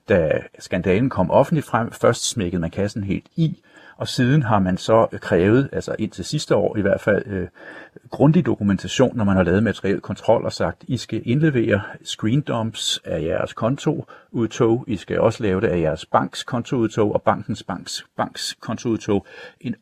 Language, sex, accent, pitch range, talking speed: Danish, male, native, 100-125 Hz, 175 wpm